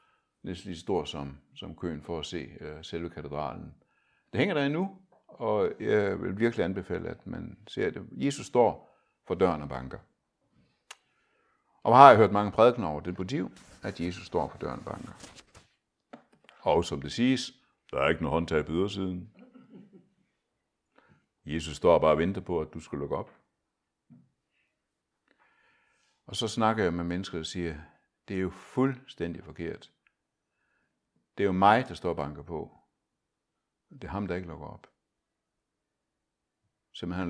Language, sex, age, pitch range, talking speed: Danish, male, 60-79, 85-120 Hz, 160 wpm